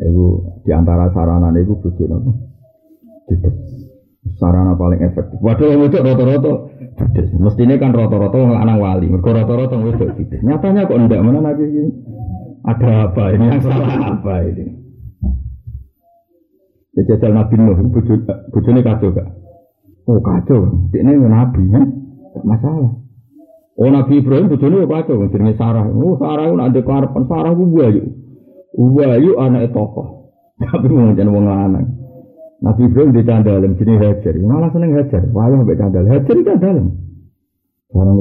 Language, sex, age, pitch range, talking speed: Indonesian, male, 50-69, 100-135 Hz, 150 wpm